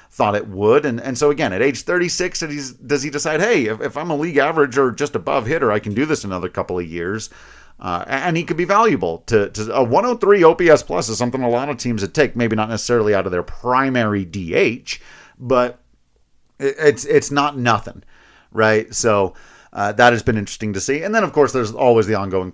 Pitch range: 100-135 Hz